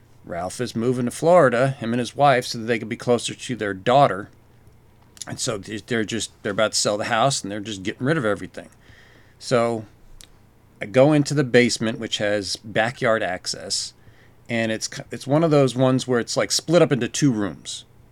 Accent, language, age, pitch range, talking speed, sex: American, English, 40-59, 110-145 Hz, 200 wpm, male